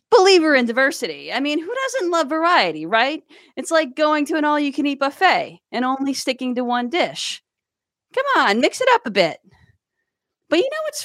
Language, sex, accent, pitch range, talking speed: English, female, American, 240-340 Hz, 200 wpm